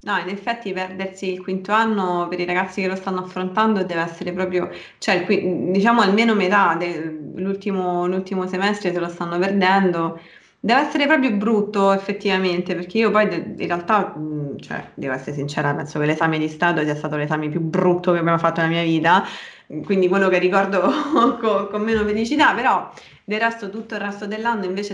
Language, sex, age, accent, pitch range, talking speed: Italian, female, 20-39, native, 175-220 Hz, 180 wpm